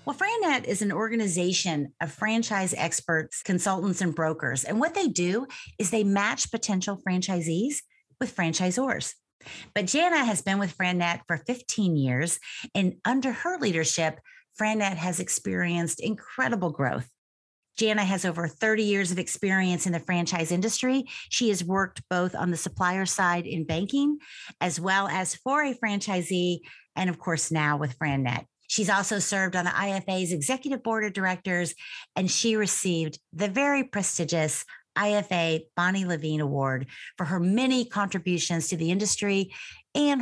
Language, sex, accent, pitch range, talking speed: English, female, American, 165-215 Hz, 150 wpm